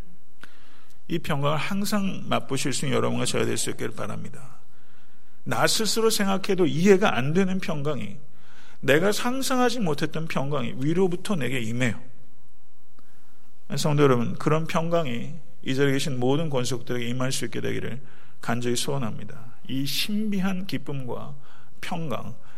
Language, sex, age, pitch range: Korean, male, 50-69, 125-160 Hz